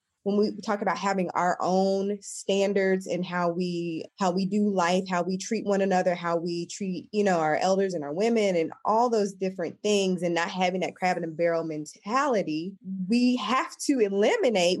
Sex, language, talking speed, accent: female, English, 190 wpm, American